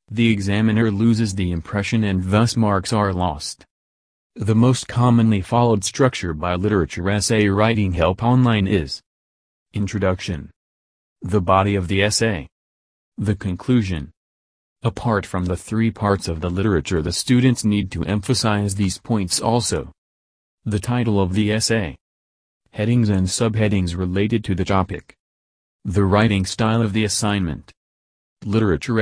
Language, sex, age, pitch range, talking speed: English, male, 30-49, 90-110 Hz, 135 wpm